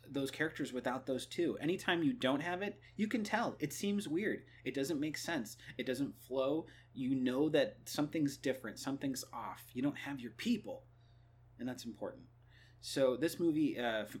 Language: English